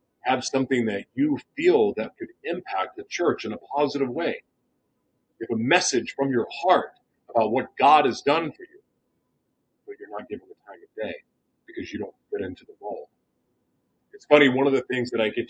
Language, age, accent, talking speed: English, 40-59, American, 200 wpm